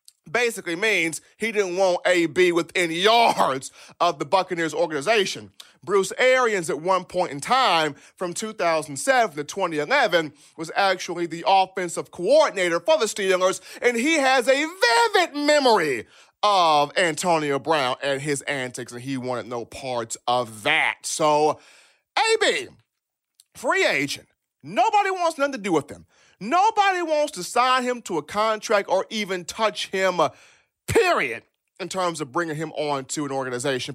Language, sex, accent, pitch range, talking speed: English, male, American, 150-240 Hz, 145 wpm